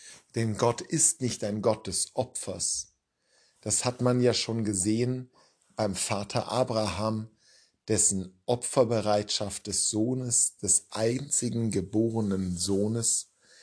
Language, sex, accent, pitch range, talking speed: German, male, German, 105-130 Hz, 110 wpm